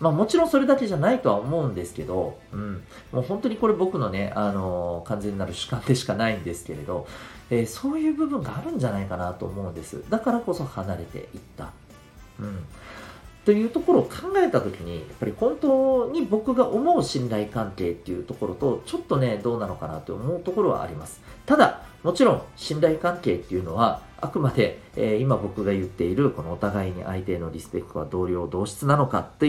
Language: Japanese